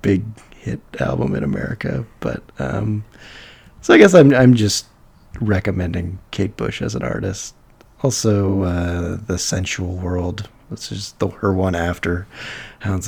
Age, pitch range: 30-49, 90-110 Hz